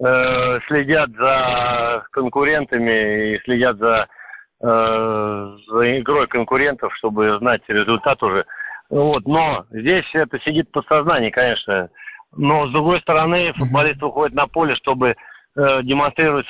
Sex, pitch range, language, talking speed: male, 125-160 Hz, Russian, 115 wpm